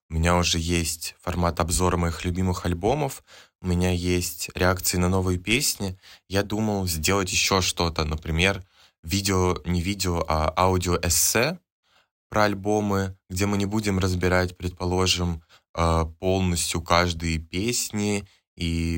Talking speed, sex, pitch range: 125 wpm, male, 85-95 Hz